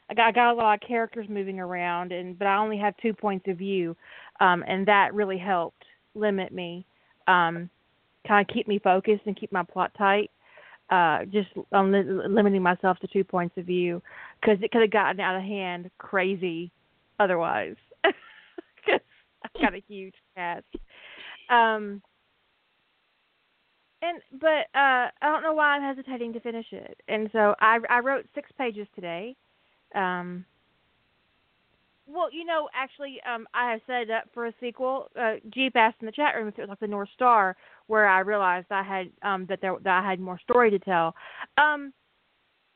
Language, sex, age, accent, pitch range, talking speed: English, female, 30-49, American, 190-240 Hz, 175 wpm